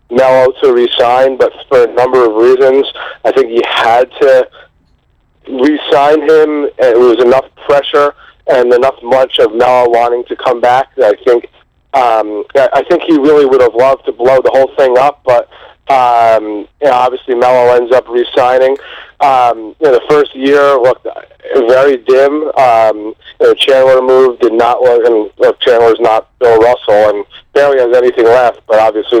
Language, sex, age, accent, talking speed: English, male, 30-49, American, 160 wpm